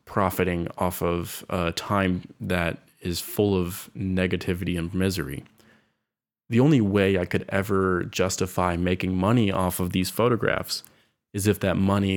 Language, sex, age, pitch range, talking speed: English, male, 20-39, 90-100 Hz, 145 wpm